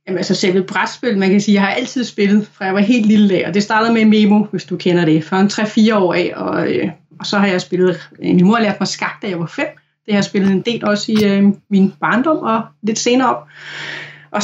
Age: 30-49